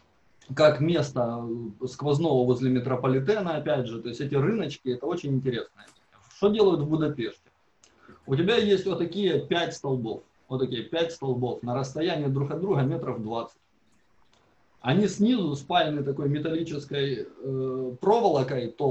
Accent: native